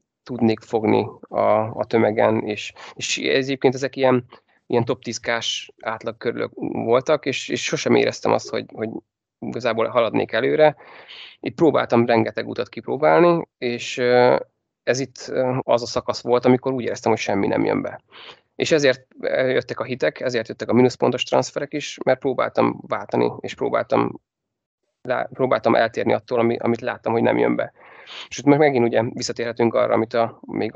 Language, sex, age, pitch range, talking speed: Hungarian, male, 30-49, 115-130 Hz, 160 wpm